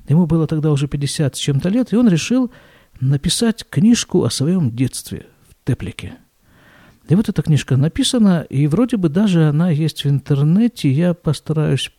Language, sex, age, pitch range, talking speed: Russian, male, 50-69, 140-205 Hz, 165 wpm